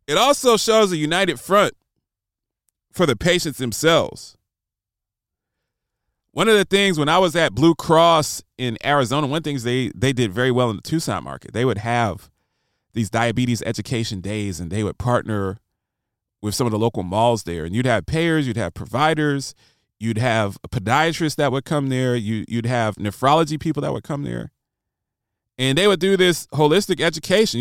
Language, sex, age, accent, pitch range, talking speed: English, male, 30-49, American, 110-155 Hz, 185 wpm